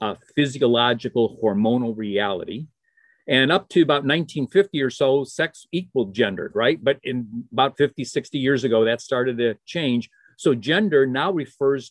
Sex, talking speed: male, 150 wpm